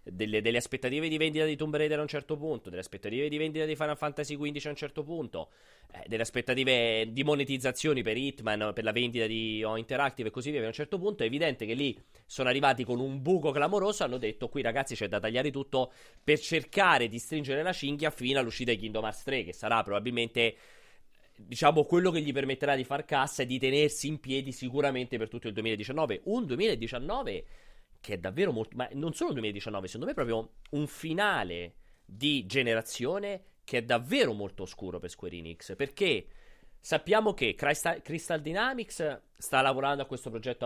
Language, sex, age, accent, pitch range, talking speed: Italian, male, 30-49, native, 110-150 Hz, 195 wpm